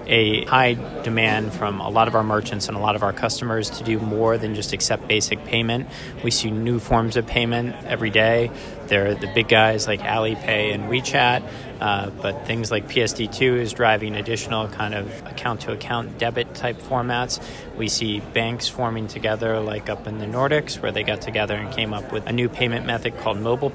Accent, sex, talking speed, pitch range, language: American, male, 200 wpm, 110-120 Hz, English